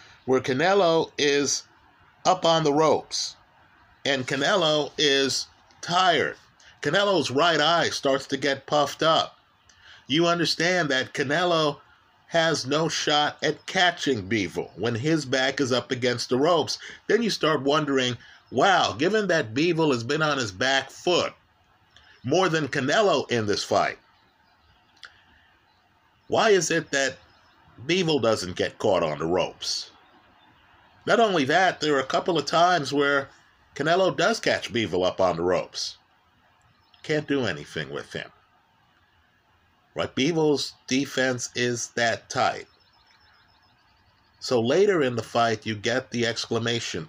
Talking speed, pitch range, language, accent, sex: 135 wpm, 115-150 Hz, English, American, male